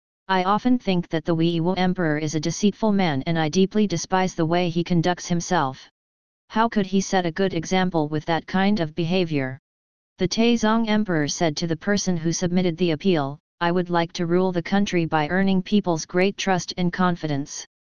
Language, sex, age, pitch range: English, female, 40-59, 160-195 Hz